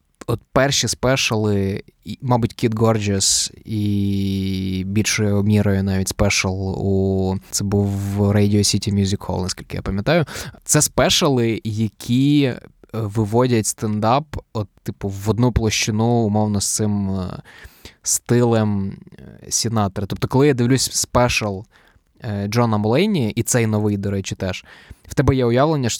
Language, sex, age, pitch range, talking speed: Ukrainian, male, 20-39, 100-120 Hz, 125 wpm